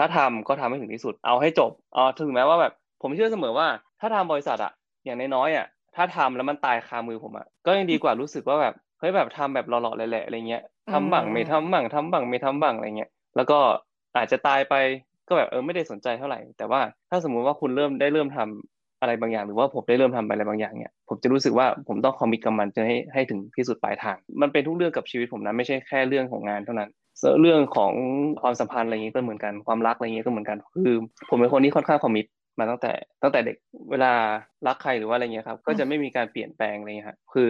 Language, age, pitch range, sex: Thai, 20-39, 115-150 Hz, male